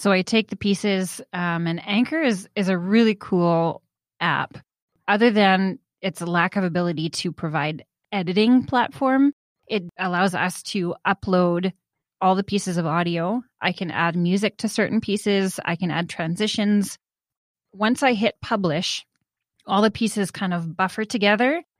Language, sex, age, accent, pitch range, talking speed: English, female, 20-39, American, 175-210 Hz, 155 wpm